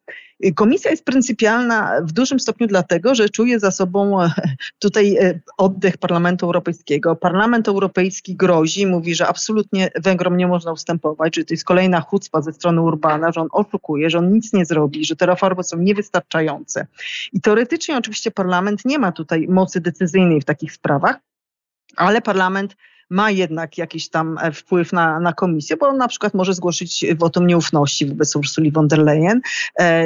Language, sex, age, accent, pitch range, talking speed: Polish, female, 30-49, native, 170-210 Hz, 165 wpm